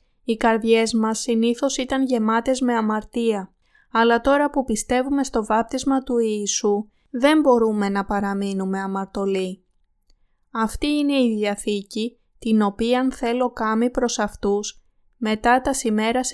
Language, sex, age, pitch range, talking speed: Greek, female, 20-39, 200-240 Hz, 125 wpm